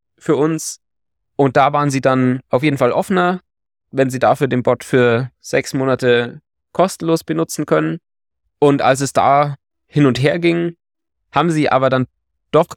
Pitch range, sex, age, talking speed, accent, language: 110-135 Hz, male, 20-39, 165 wpm, German, German